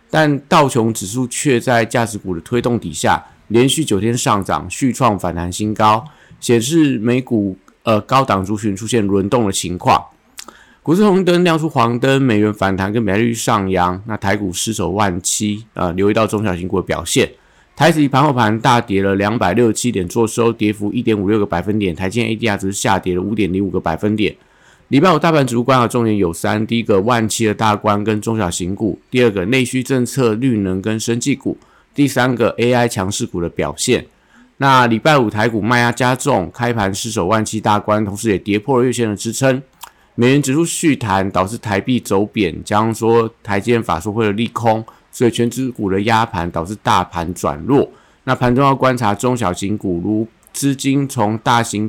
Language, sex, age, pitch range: Chinese, male, 50-69, 100-125 Hz